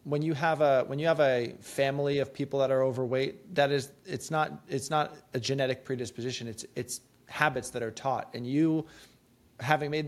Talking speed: 195 wpm